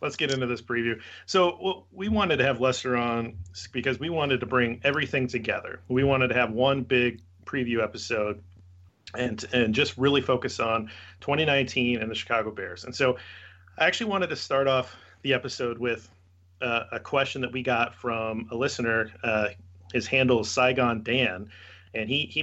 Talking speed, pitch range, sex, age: 180 wpm, 105-125 Hz, male, 40-59